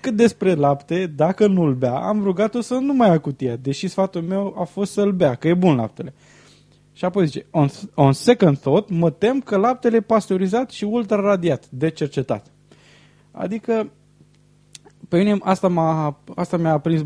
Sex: male